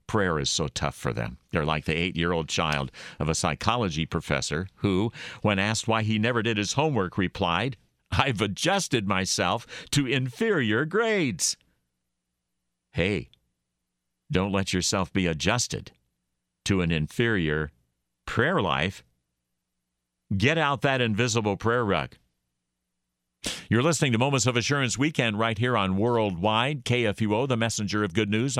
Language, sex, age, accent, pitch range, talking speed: English, male, 50-69, American, 80-125 Hz, 135 wpm